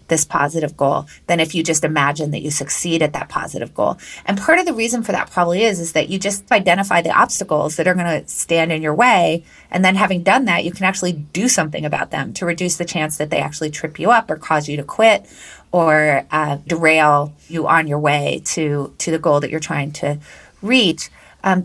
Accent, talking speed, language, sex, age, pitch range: American, 230 wpm, English, female, 30-49, 155-195 Hz